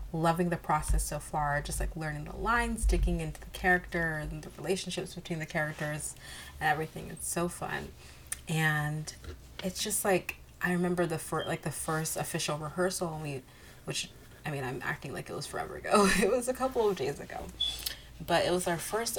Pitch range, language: 150-185 Hz, English